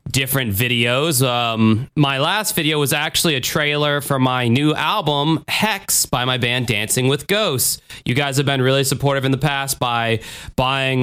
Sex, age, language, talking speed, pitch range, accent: male, 20-39, English, 175 wpm, 130-165 Hz, American